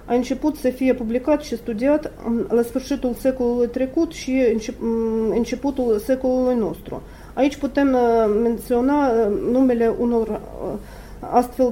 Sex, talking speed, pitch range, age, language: female, 110 wpm, 225-260 Hz, 40-59, Romanian